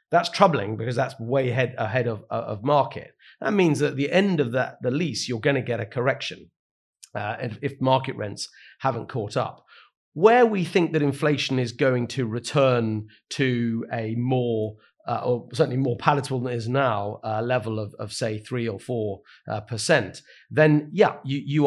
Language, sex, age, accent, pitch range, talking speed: English, male, 40-59, British, 115-140 Hz, 190 wpm